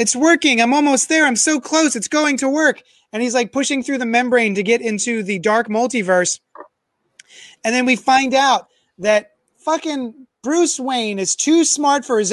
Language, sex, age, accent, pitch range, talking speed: English, male, 30-49, American, 210-260 Hz, 190 wpm